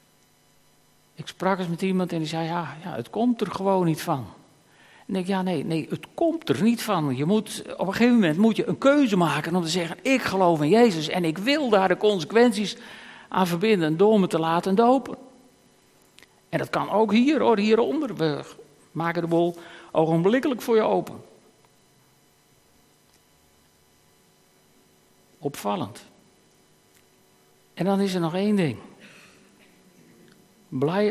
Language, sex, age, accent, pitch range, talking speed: Dutch, male, 60-79, Dutch, 155-210 Hz, 160 wpm